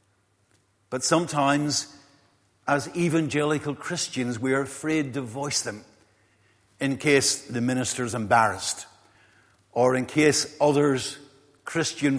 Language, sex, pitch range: English, male, 105-155 Hz